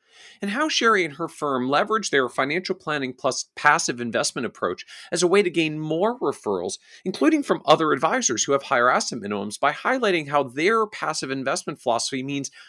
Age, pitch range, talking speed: 40-59, 125-190 Hz, 180 wpm